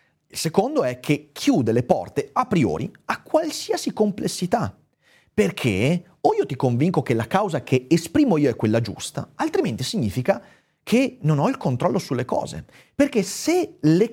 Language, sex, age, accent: Italian, male, 30-49, native